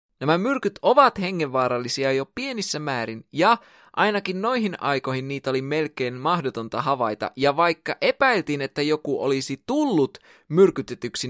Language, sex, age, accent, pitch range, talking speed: Finnish, male, 20-39, native, 130-195 Hz, 125 wpm